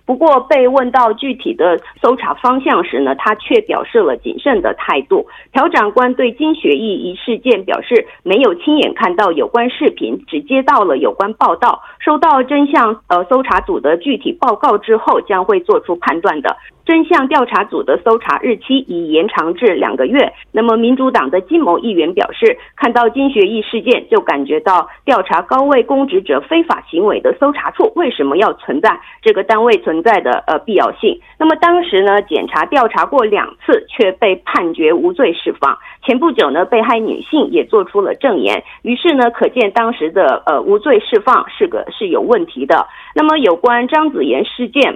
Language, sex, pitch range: Korean, female, 245-405 Hz